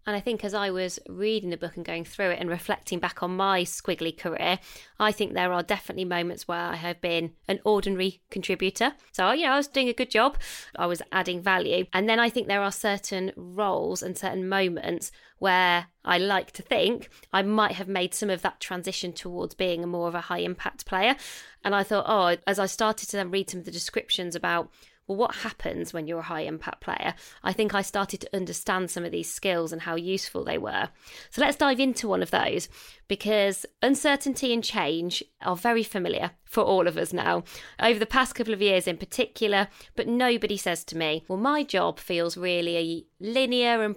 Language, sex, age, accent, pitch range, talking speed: English, female, 20-39, British, 175-210 Hz, 210 wpm